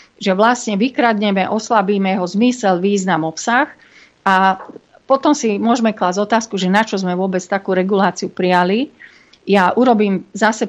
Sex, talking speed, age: female, 140 wpm, 50-69